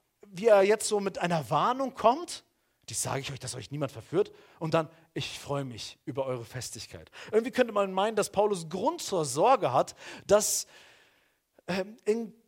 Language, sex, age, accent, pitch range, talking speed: German, male, 40-59, German, 120-190 Hz, 175 wpm